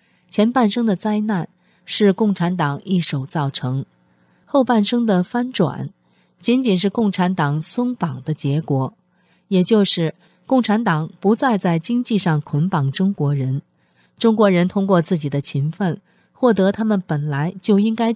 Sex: female